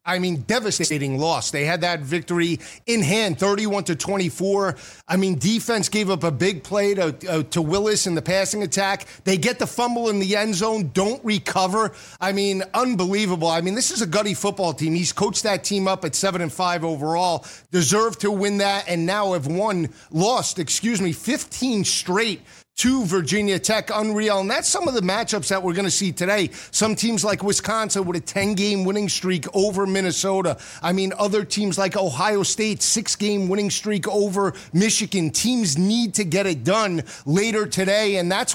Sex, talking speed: male, 190 wpm